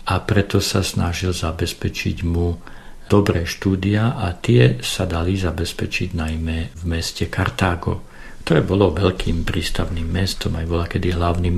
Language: Slovak